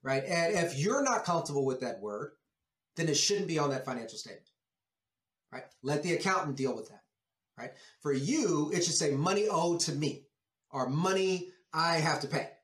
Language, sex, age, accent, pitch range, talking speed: English, male, 30-49, American, 135-195 Hz, 190 wpm